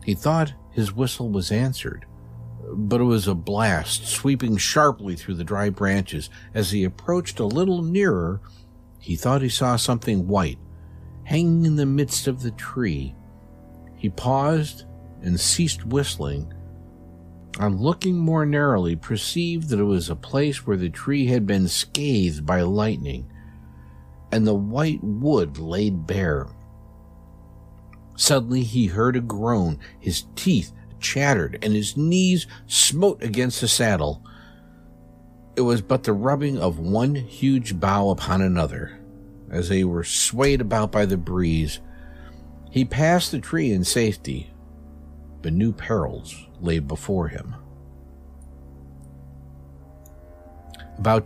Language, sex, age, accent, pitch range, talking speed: English, male, 50-69, American, 80-120 Hz, 130 wpm